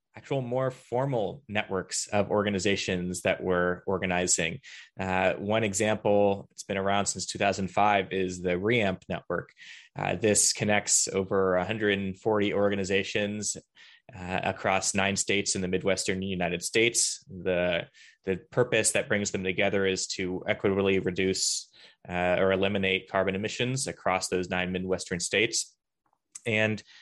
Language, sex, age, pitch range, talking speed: English, male, 20-39, 95-110 Hz, 130 wpm